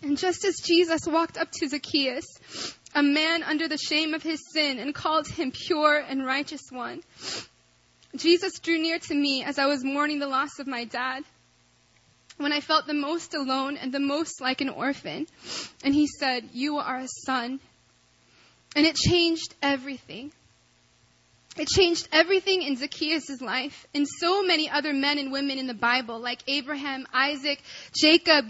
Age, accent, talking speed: 20-39, American, 170 wpm